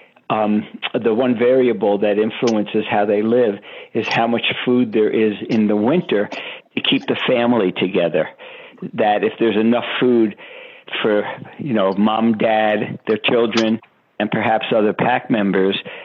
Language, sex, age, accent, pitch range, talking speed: English, male, 60-79, American, 100-115 Hz, 150 wpm